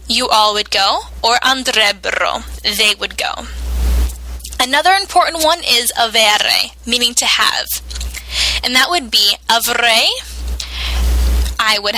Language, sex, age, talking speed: Italian, female, 10-29, 120 wpm